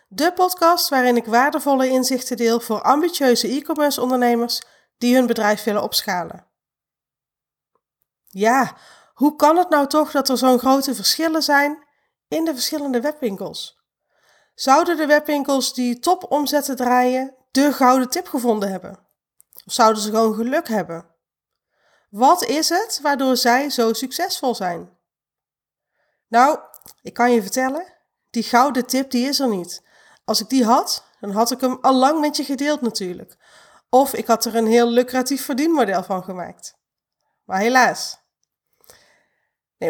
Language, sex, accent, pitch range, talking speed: Dutch, female, Dutch, 230-295 Hz, 145 wpm